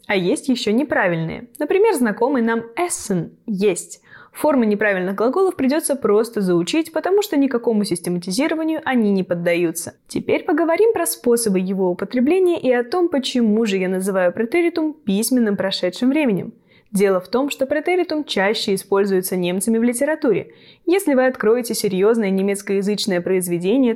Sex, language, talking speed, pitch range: female, Russian, 140 wpm, 195-285 Hz